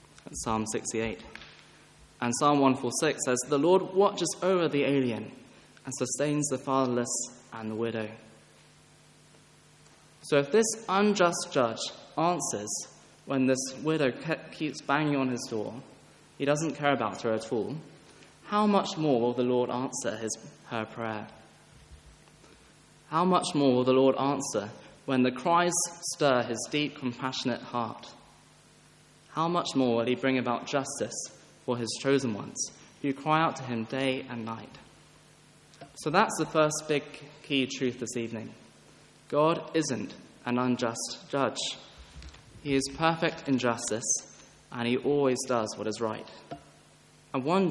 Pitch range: 120-155 Hz